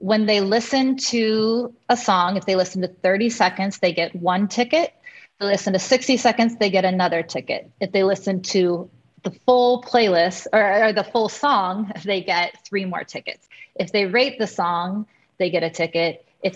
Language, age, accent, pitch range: English, 20-39, American, 180-225 Hz